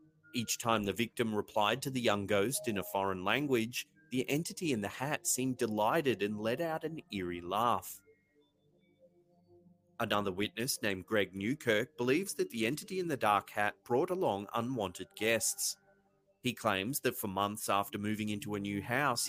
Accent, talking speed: Australian, 170 wpm